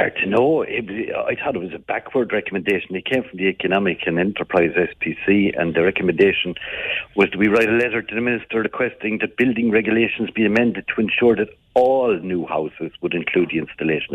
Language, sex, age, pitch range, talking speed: English, male, 60-79, 95-120 Hz, 205 wpm